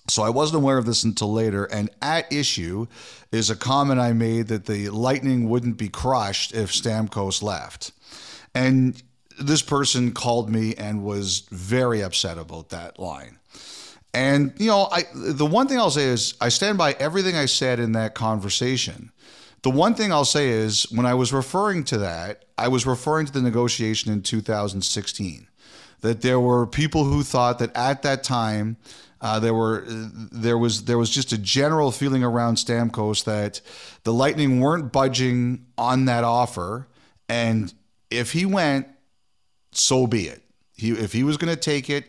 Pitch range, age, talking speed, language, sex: 110-130 Hz, 40-59, 175 wpm, English, male